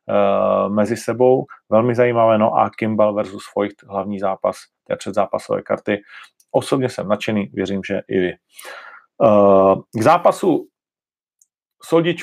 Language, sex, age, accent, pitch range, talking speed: Czech, male, 40-59, native, 105-130 Hz, 130 wpm